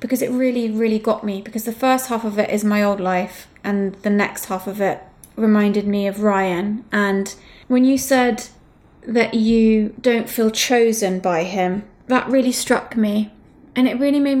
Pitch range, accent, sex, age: 210-250 Hz, British, female, 20-39